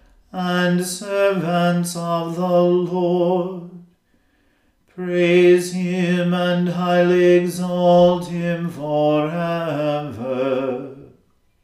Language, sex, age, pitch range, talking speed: English, male, 40-59, 175-180 Hz, 65 wpm